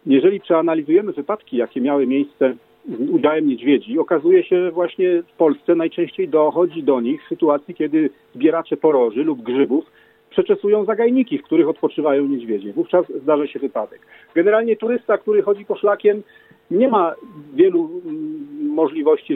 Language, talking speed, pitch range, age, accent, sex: Polish, 145 wpm, 140-210 Hz, 40-59, native, male